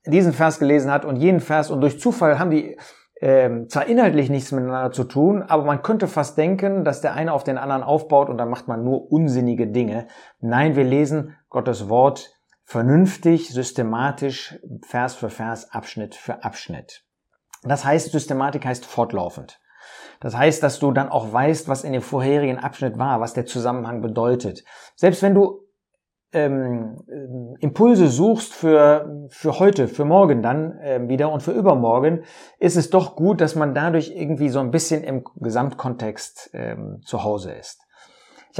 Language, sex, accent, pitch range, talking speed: German, male, German, 130-165 Hz, 170 wpm